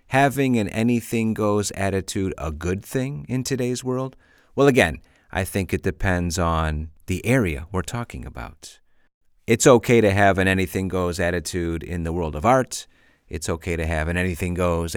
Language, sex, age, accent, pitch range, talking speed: English, male, 40-59, American, 85-120 Hz, 160 wpm